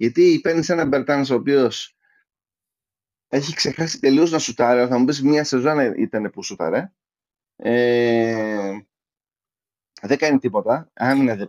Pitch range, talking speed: 115-175 Hz, 135 wpm